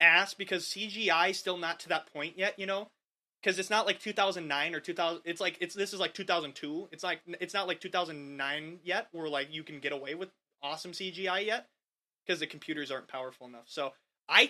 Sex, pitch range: male, 155-195 Hz